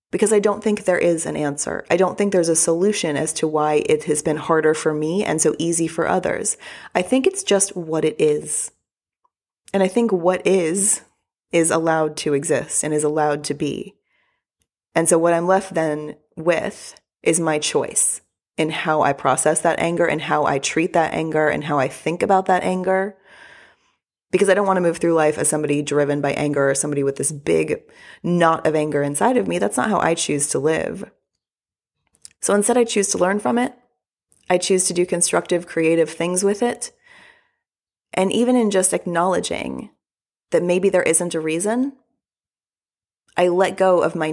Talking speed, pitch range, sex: 190 wpm, 155-190 Hz, female